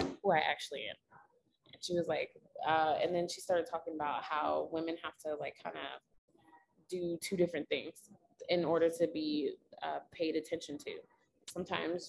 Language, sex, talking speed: English, female, 170 wpm